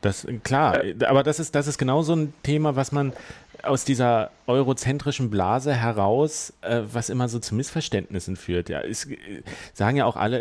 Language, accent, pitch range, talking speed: German, German, 90-115 Hz, 180 wpm